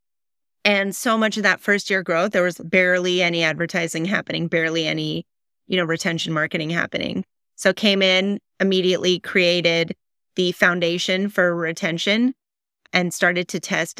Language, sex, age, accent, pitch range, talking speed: English, female, 30-49, American, 170-200 Hz, 145 wpm